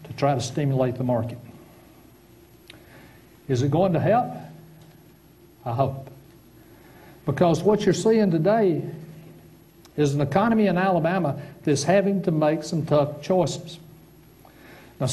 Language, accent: English, American